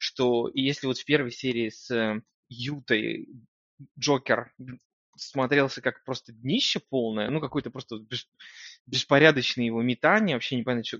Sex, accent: male, native